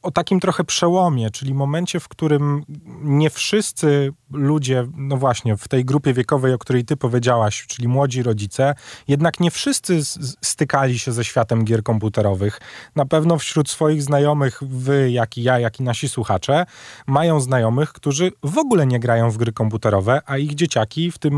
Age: 30-49